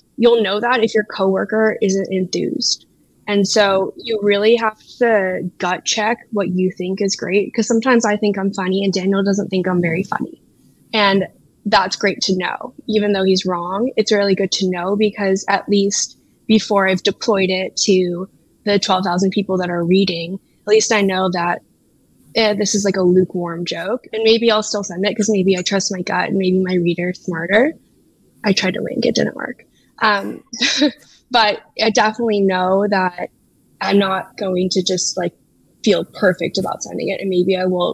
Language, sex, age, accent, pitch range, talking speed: English, female, 10-29, American, 185-210 Hz, 190 wpm